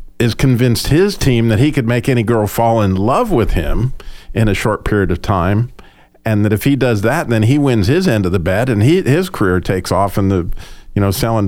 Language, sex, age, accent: English, male, 50-69, American